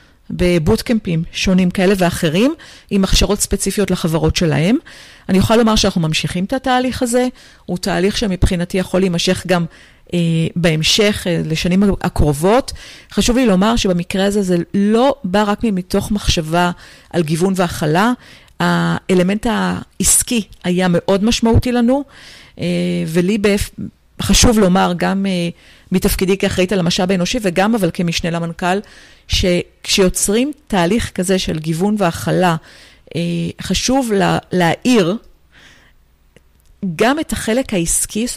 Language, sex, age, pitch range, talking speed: Hebrew, female, 40-59, 175-220 Hz, 120 wpm